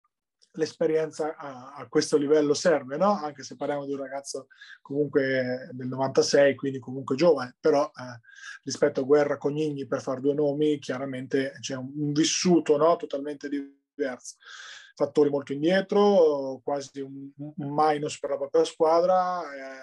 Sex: male